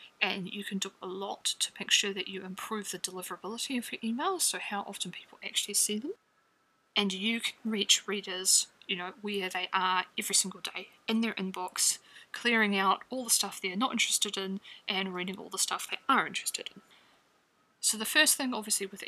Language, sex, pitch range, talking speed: English, female, 190-220 Hz, 200 wpm